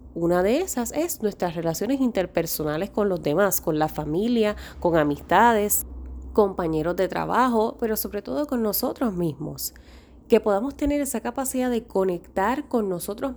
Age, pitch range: 20-39, 180-245 Hz